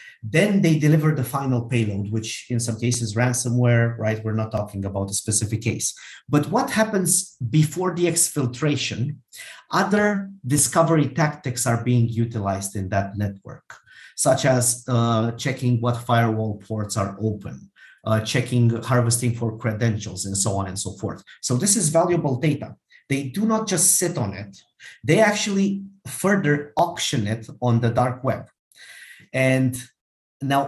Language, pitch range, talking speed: English, 110-145 Hz, 150 wpm